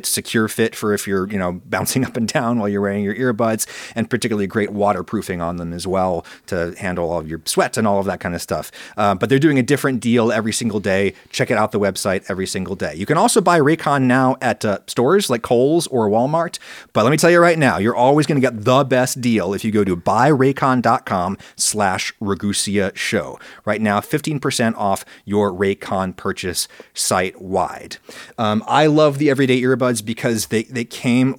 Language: English